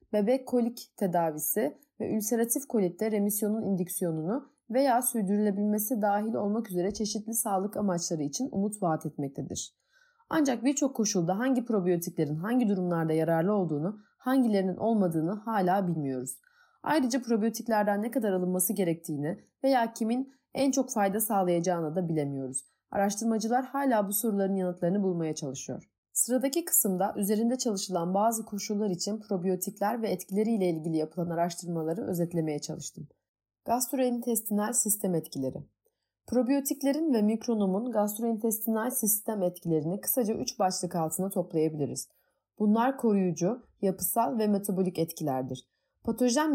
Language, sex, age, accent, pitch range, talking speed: Turkish, female, 30-49, native, 175-230 Hz, 115 wpm